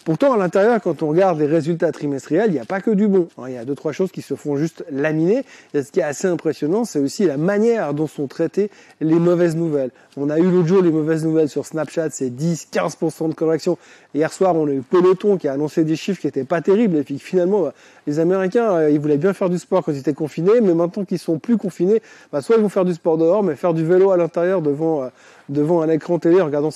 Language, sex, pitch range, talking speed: French, male, 155-195 Hz, 245 wpm